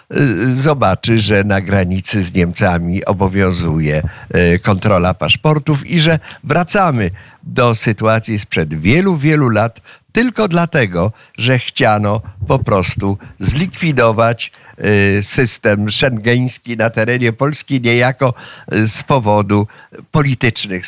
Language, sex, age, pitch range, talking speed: Polish, male, 50-69, 100-140 Hz, 100 wpm